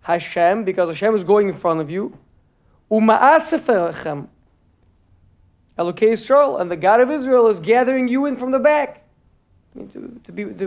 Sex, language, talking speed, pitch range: male, English, 165 wpm, 155-230 Hz